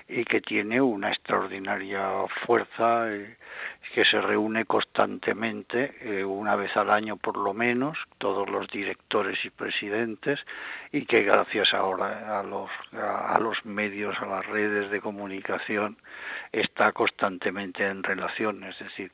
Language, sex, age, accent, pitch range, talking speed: Spanish, male, 60-79, Spanish, 100-105 Hz, 140 wpm